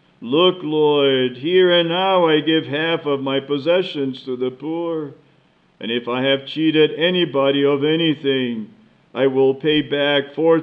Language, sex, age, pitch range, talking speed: English, male, 50-69, 130-165 Hz, 150 wpm